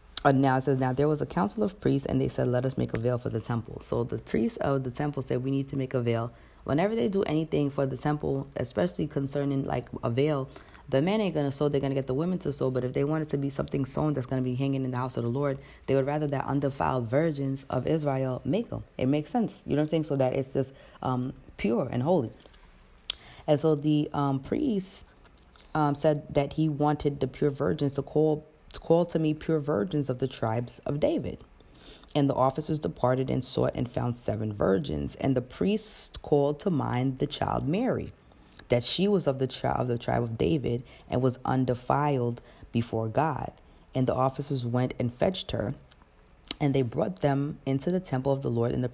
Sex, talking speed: female, 225 wpm